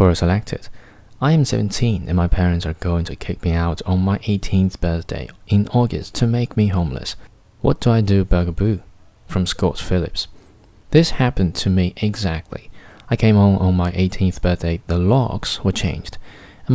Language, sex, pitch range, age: Chinese, male, 90-110 Hz, 20-39